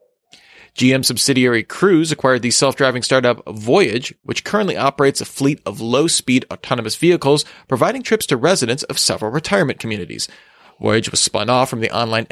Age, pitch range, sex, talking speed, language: 30-49, 120-160 Hz, male, 155 wpm, English